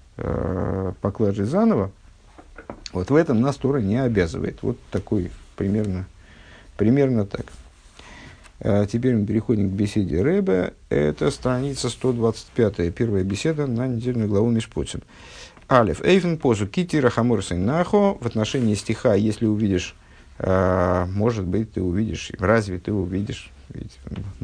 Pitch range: 95-120 Hz